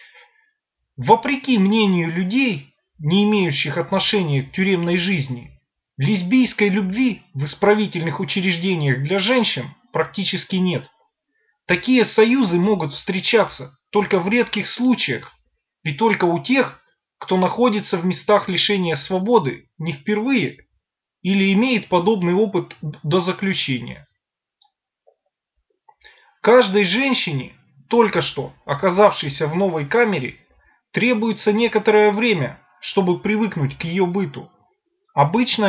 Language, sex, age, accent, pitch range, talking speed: Russian, male, 20-39, native, 160-225 Hz, 105 wpm